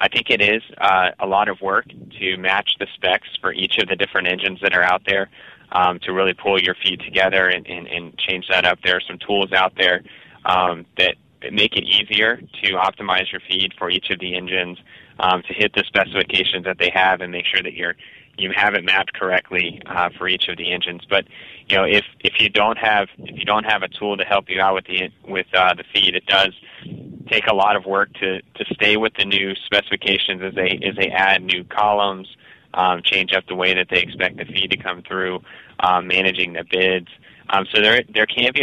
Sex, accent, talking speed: male, American, 230 wpm